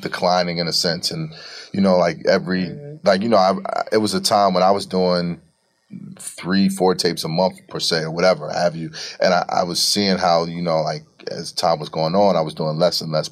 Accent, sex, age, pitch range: American, male, 30-49, 80-95 Hz